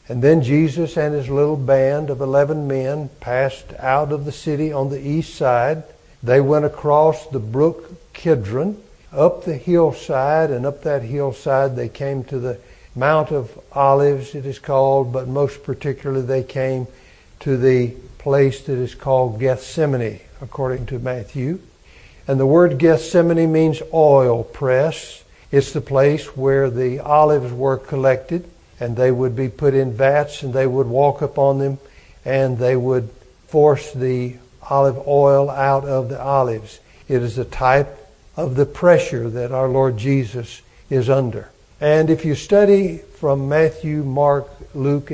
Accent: American